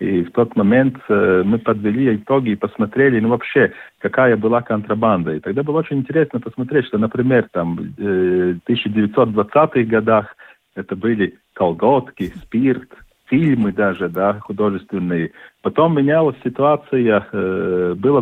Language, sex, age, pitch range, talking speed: Russian, male, 50-69, 100-130 Hz, 120 wpm